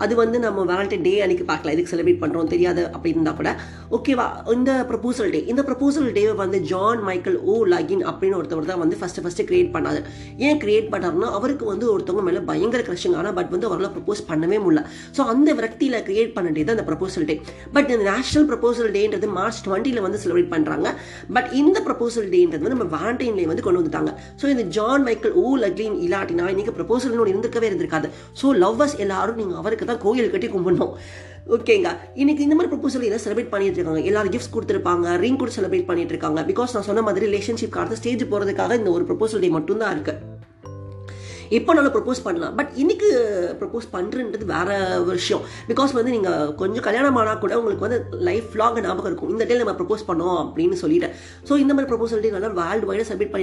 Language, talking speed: Tamil, 65 wpm